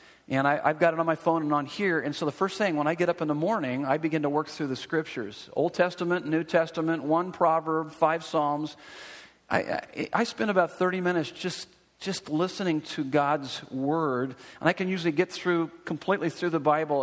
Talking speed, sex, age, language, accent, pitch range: 215 wpm, male, 50-69, English, American, 150-190 Hz